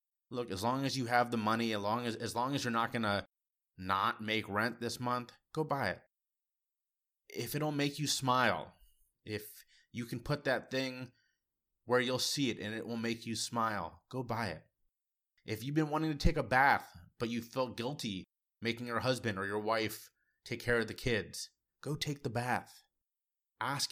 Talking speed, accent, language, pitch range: 195 wpm, American, English, 105-130 Hz